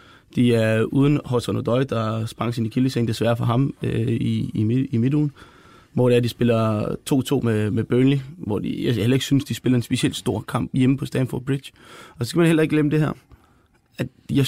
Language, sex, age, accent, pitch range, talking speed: Danish, male, 20-39, native, 115-135 Hz, 220 wpm